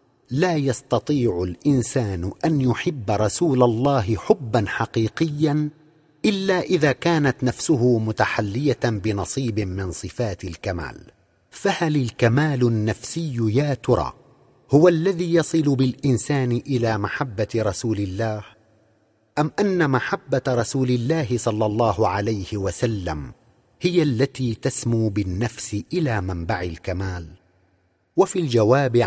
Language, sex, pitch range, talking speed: Arabic, male, 110-145 Hz, 100 wpm